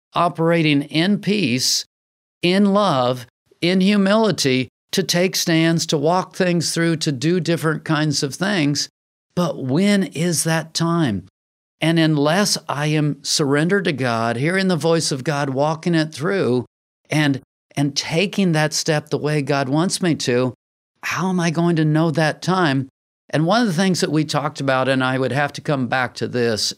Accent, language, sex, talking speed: American, English, male, 175 wpm